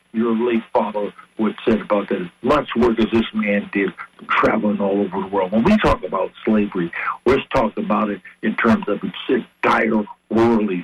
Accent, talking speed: American, 195 wpm